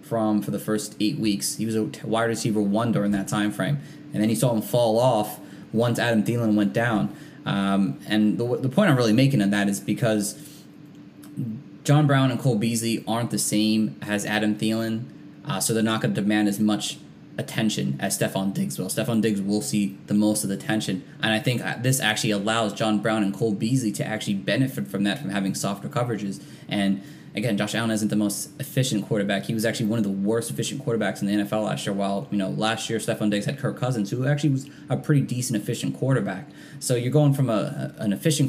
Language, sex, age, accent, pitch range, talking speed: English, male, 20-39, American, 105-125 Hz, 220 wpm